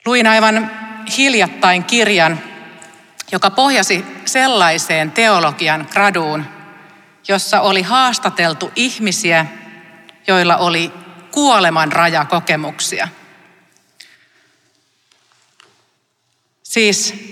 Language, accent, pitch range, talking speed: Finnish, native, 165-200 Hz, 60 wpm